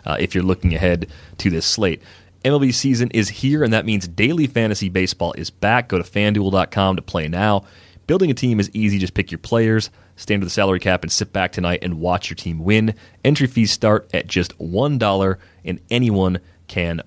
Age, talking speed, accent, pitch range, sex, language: 30-49, 205 wpm, American, 90-110 Hz, male, English